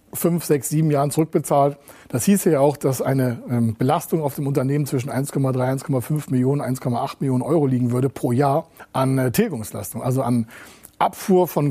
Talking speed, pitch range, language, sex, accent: 180 wpm, 125-150 Hz, German, male, German